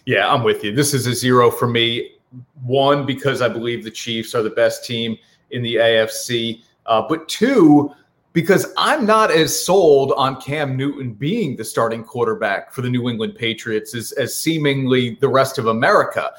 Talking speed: 185 wpm